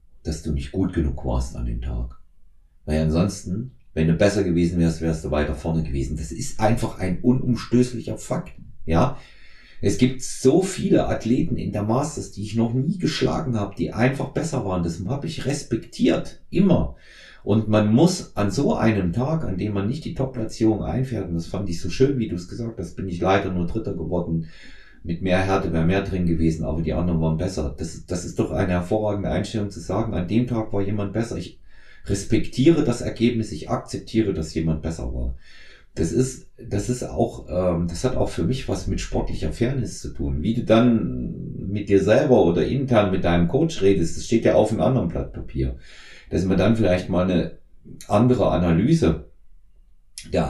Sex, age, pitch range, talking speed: male, 40-59, 80-110 Hz, 195 wpm